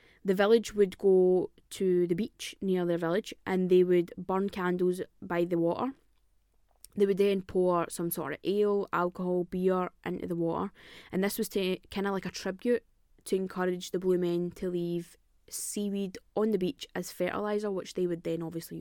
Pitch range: 175-205 Hz